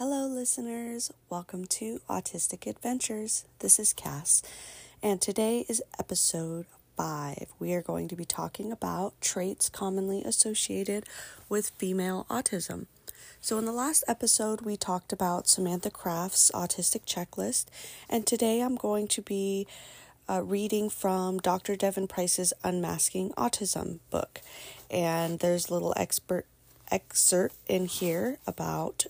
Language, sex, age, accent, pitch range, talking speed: English, female, 30-49, American, 180-220 Hz, 130 wpm